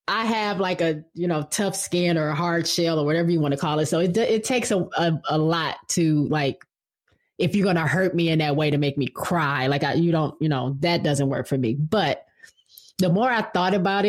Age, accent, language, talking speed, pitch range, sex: 20-39, American, English, 250 wpm, 160-205 Hz, female